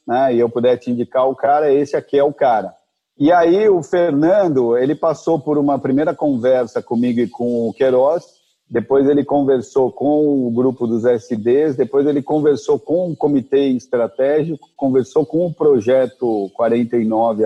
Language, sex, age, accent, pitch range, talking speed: Portuguese, male, 50-69, Brazilian, 120-150 Hz, 170 wpm